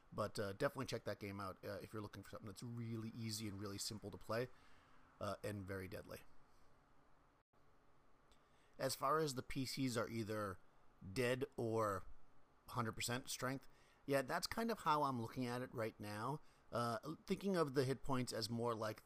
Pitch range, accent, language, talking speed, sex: 105-130 Hz, American, English, 175 wpm, male